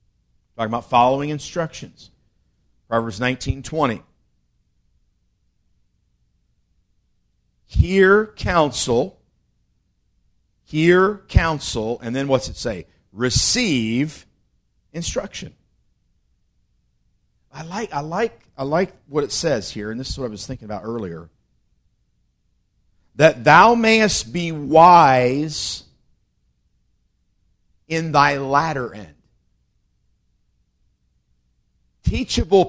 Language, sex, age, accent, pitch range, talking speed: English, male, 50-69, American, 115-185 Hz, 85 wpm